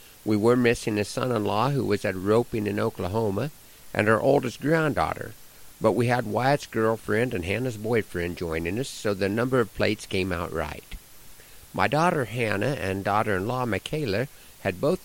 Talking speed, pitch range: 165 wpm, 95-120 Hz